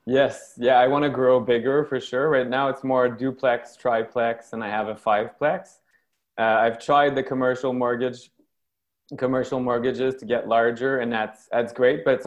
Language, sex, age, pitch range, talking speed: English, male, 20-39, 110-130 Hz, 180 wpm